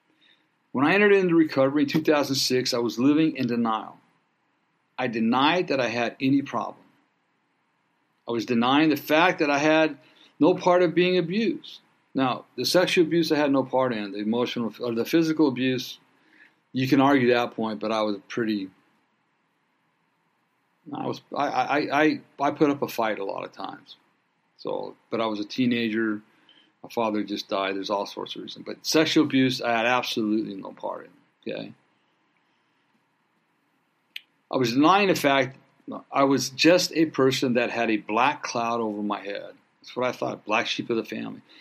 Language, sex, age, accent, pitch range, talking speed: English, male, 50-69, American, 110-150 Hz, 175 wpm